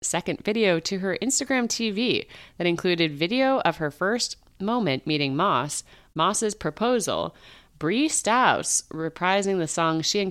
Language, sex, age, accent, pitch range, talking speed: English, female, 30-49, American, 145-210 Hz, 140 wpm